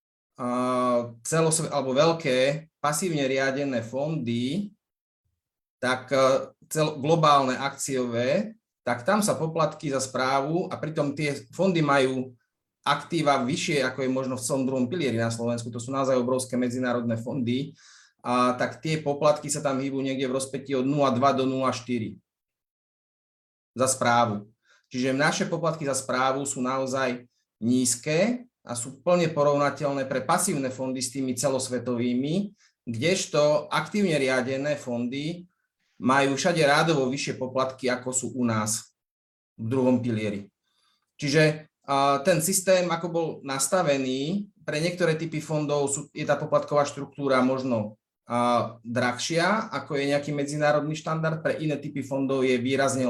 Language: Slovak